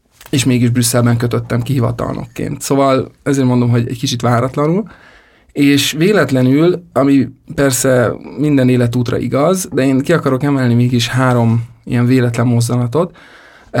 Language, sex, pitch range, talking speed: Hungarian, male, 120-145 Hz, 125 wpm